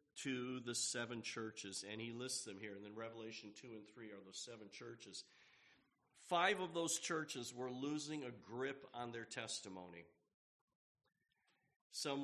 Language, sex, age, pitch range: English, male, 50-69, 110-140 Hz